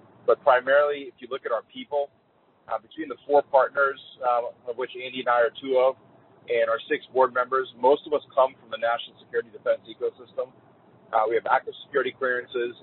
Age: 40-59